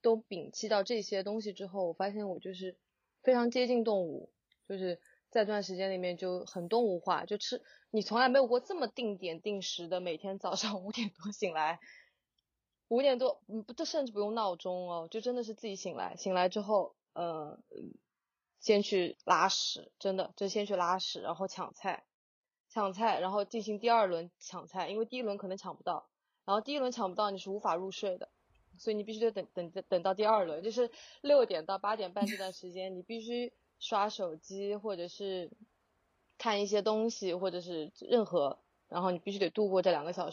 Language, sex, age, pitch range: Chinese, female, 20-39, 180-220 Hz